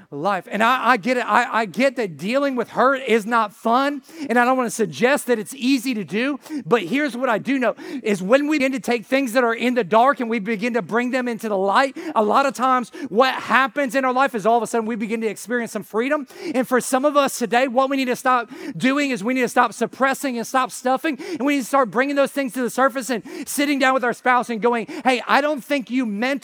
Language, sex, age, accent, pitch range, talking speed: English, male, 40-59, American, 225-270 Hz, 270 wpm